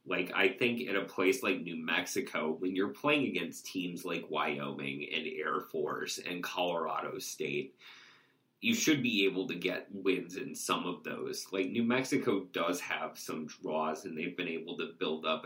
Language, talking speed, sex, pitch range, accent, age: English, 185 wpm, male, 90-100 Hz, American, 30-49